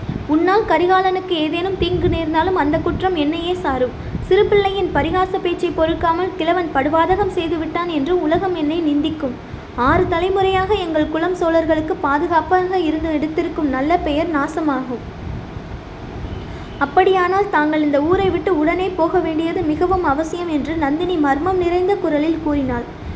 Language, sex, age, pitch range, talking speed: Tamil, female, 20-39, 300-360 Hz, 120 wpm